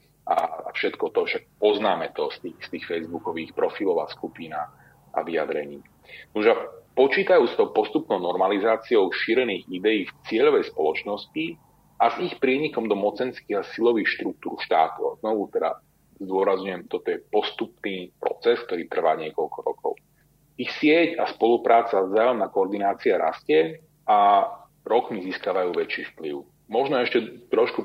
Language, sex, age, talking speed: Slovak, male, 40-59, 135 wpm